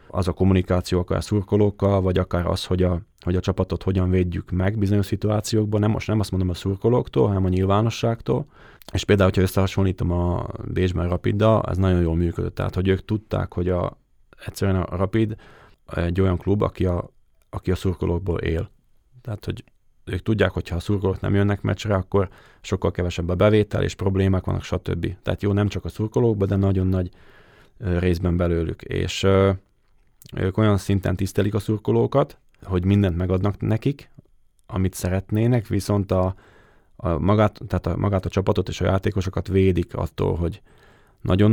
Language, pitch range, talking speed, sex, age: Hungarian, 90-105 Hz, 170 wpm, male, 30-49